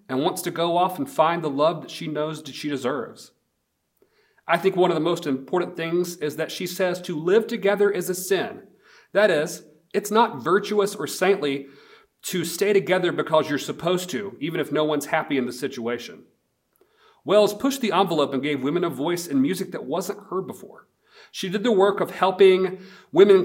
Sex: male